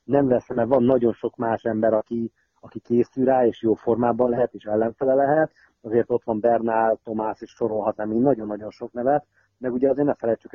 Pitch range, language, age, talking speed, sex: 115-130 Hz, Hungarian, 30-49, 195 wpm, male